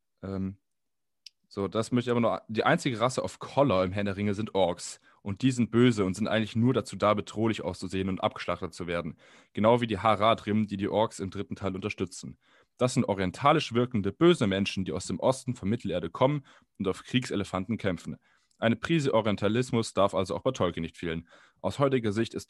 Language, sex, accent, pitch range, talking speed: German, male, German, 100-120 Hz, 205 wpm